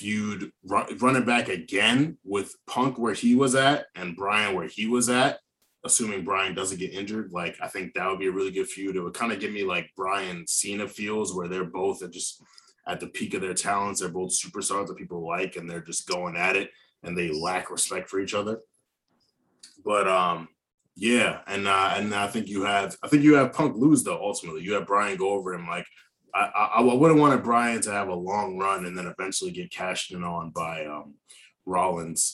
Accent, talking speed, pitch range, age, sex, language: American, 220 wpm, 90-115 Hz, 20-39, male, English